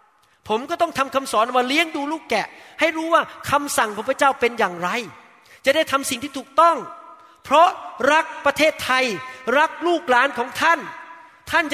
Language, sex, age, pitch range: Thai, male, 30-49, 255-315 Hz